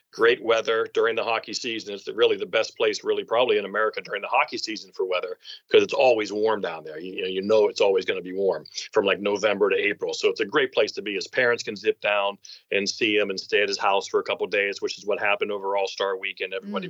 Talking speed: 265 wpm